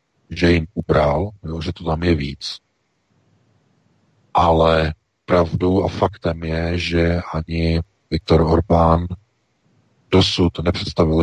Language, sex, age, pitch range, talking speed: Czech, male, 40-59, 80-95 Hz, 105 wpm